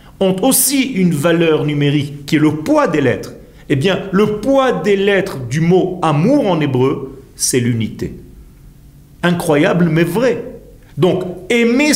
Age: 50-69